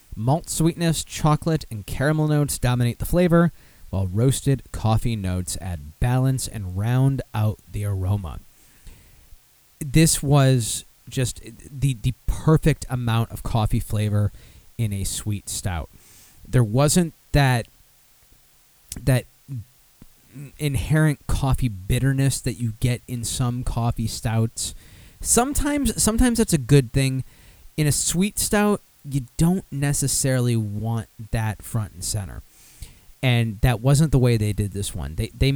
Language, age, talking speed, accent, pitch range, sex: English, 30-49, 130 wpm, American, 100-135 Hz, male